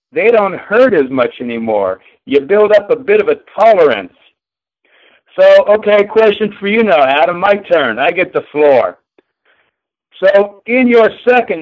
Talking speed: 160 wpm